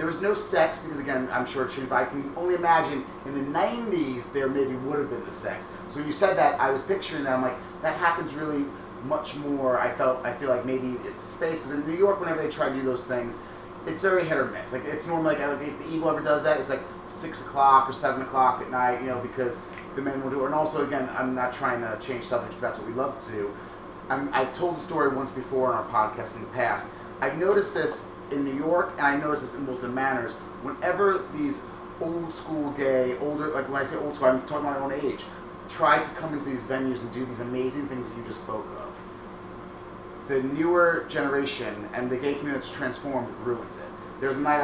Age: 30-49